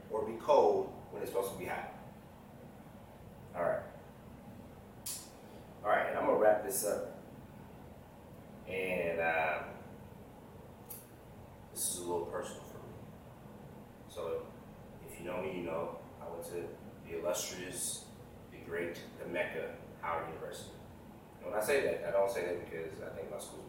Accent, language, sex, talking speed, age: American, English, male, 150 wpm, 30-49